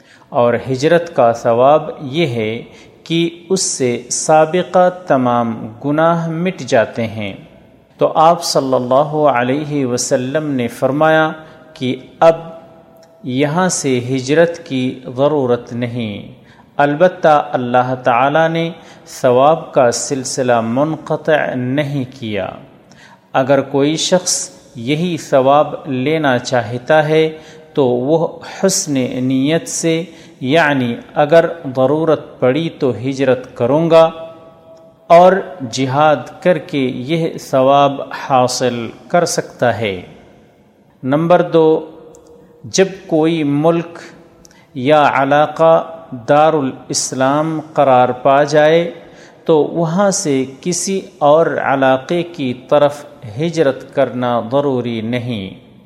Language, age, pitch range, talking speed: Urdu, 40-59, 130-165 Hz, 105 wpm